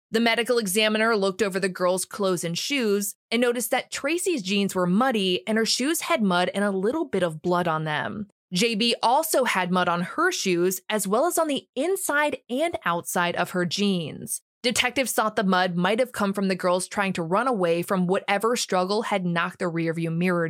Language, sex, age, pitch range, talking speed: English, female, 20-39, 180-235 Hz, 205 wpm